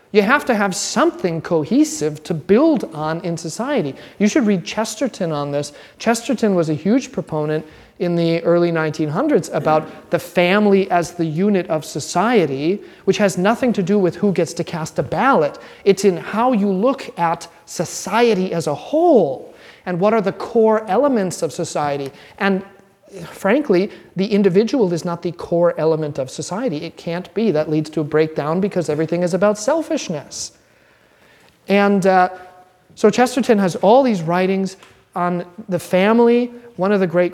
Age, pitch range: 30-49, 170-210 Hz